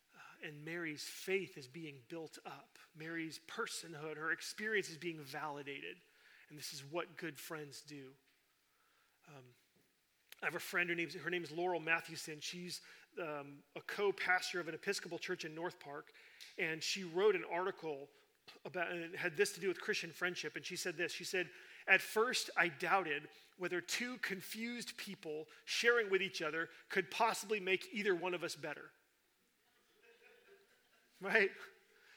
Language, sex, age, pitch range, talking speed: English, male, 40-59, 160-205 Hz, 160 wpm